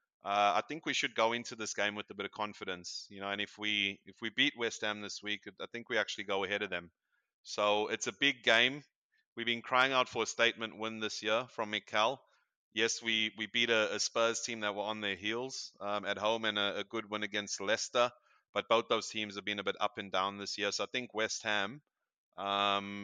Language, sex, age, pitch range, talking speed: English, male, 30-49, 100-115 Hz, 240 wpm